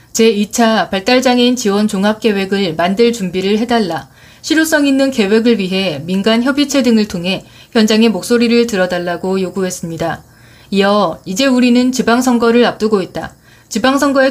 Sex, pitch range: female, 190-240 Hz